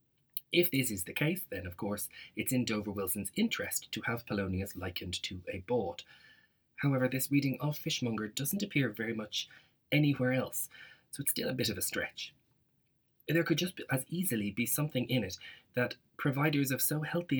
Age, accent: 30-49, Irish